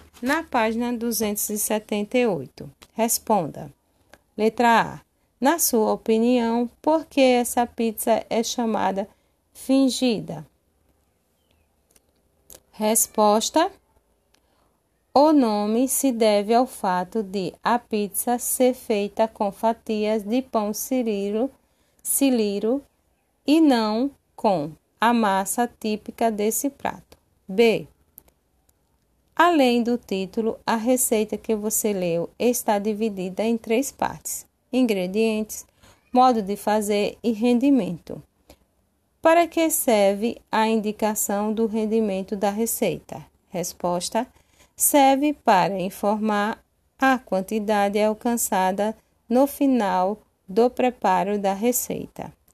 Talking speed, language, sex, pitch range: 95 wpm, Portuguese, female, 205-245 Hz